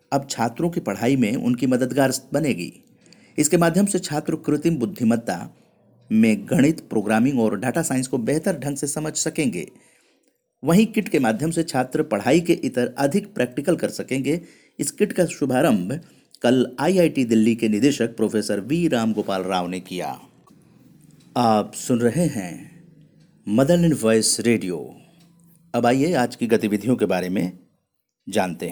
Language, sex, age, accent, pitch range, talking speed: Hindi, male, 50-69, native, 110-160 Hz, 150 wpm